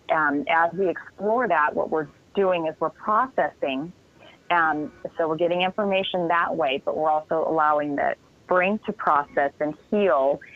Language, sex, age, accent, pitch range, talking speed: English, female, 30-49, American, 145-170 Hz, 160 wpm